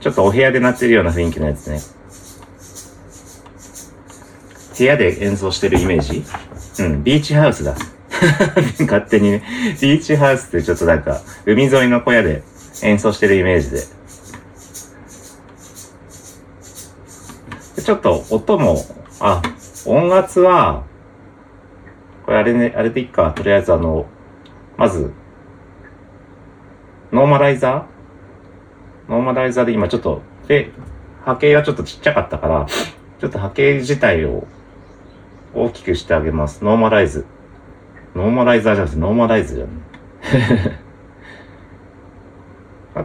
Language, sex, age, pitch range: Japanese, male, 40-59, 95-115 Hz